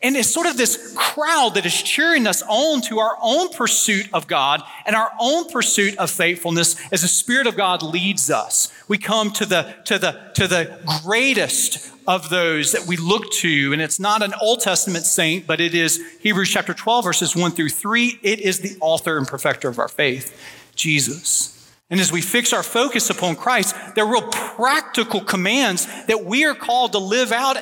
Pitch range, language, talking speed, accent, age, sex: 180-245 Hz, English, 195 wpm, American, 40-59, male